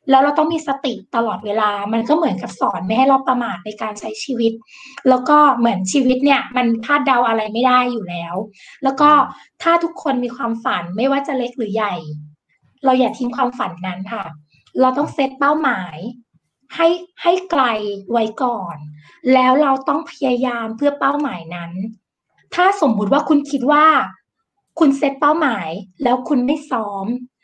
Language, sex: English, female